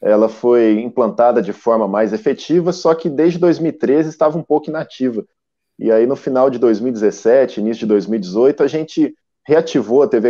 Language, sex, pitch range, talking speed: Portuguese, male, 115-155 Hz, 170 wpm